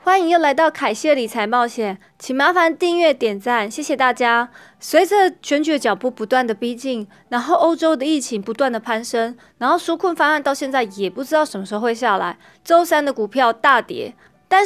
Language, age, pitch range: Chinese, 20-39, 225-310 Hz